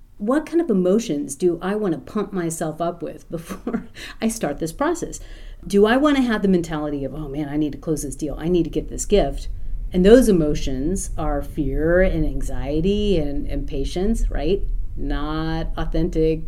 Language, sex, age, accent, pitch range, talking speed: English, female, 40-59, American, 150-200 Hz, 190 wpm